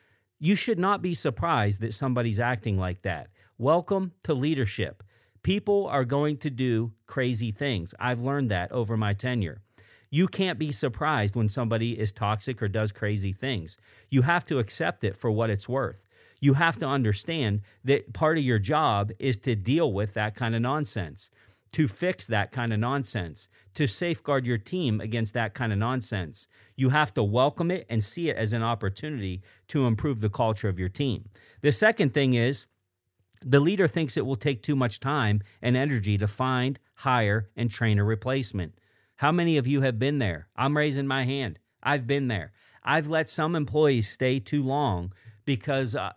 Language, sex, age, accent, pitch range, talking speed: English, male, 40-59, American, 105-140 Hz, 185 wpm